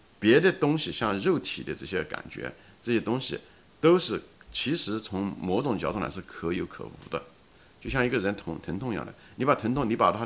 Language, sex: Chinese, male